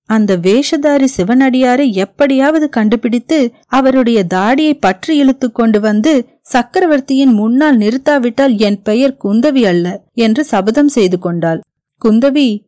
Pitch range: 205-280 Hz